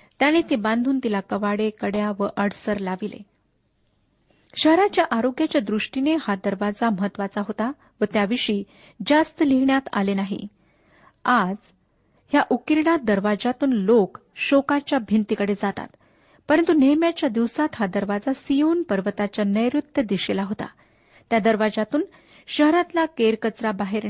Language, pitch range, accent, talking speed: Marathi, 205-275 Hz, native, 115 wpm